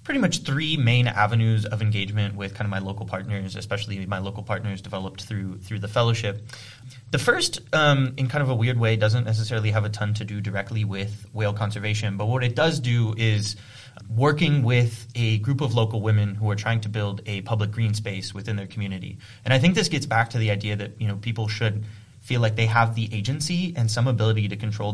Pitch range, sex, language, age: 105-120 Hz, male, English, 20-39